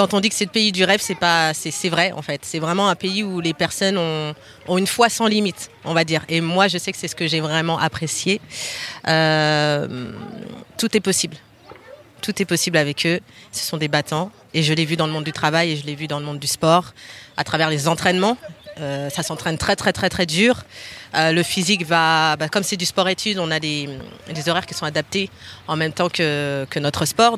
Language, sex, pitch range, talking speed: French, female, 155-195 Hz, 235 wpm